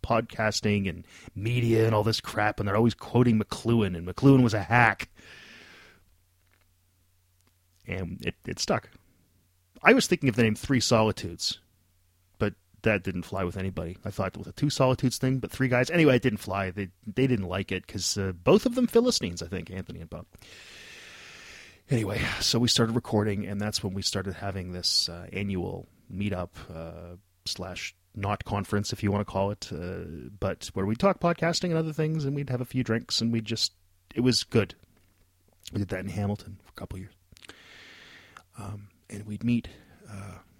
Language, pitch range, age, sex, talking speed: English, 90-115 Hz, 30-49, male, 185 wpm